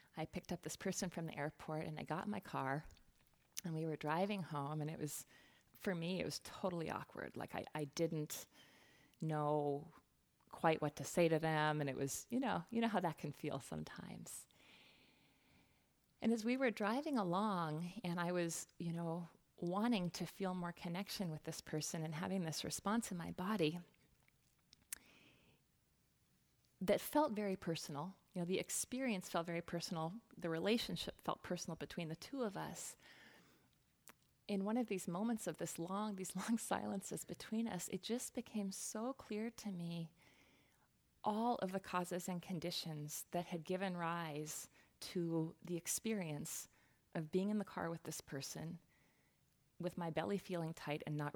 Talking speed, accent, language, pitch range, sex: 170 wpm, American, English, 160-200 Hz, female